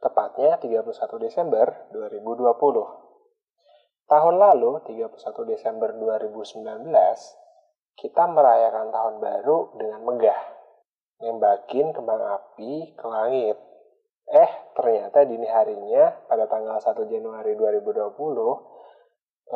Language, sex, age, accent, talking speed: Indonesian, male, 20-39, native, 90 wpm